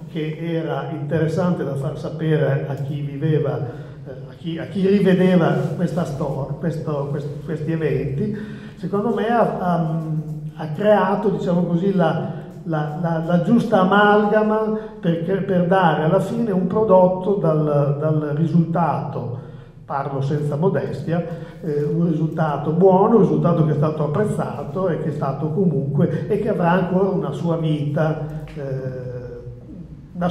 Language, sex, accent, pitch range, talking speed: Italian, male, native, 145-170 Hz, 140 wpm